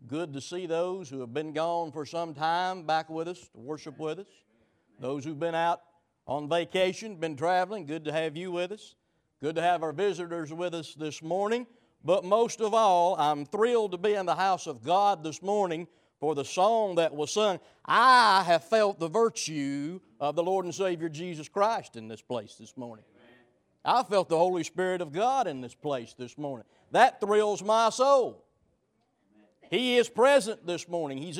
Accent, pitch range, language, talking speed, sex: American, 130-190 Hz, English, 195 wpm, male